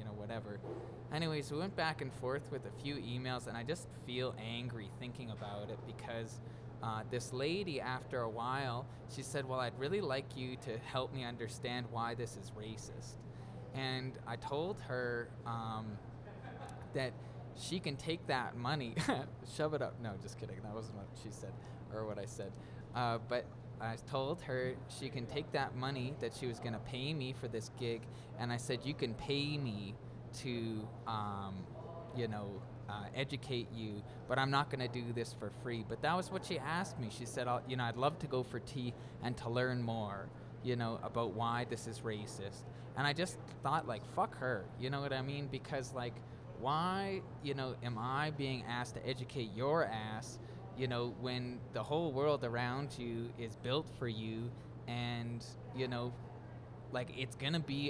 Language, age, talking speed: English, 20-39, 190 wpm